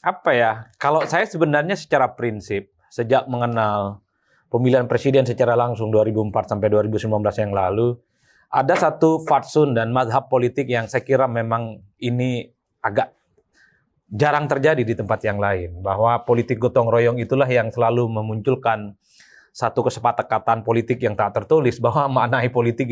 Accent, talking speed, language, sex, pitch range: native, 140 wpm, Indonesian, male, 110-140 Hz